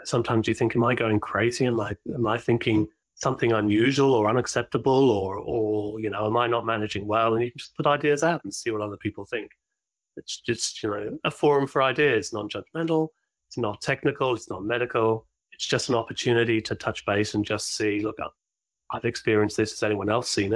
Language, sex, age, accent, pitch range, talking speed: English, male, 30-49, British, 105-125 Hz, 210 wpm